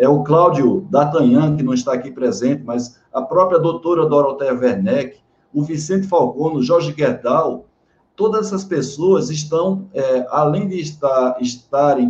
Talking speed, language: 140 wpm, Portuguese